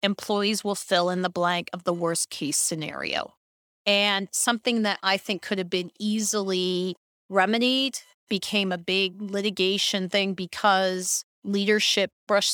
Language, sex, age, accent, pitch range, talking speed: English, female, 40-59, American, 180-215 Hz, 140 wpm